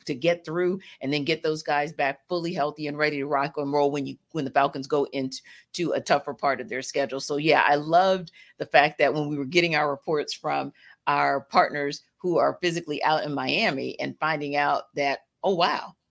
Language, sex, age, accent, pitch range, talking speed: English, female, 40-59, American, 145-190 Hz, 220 wpm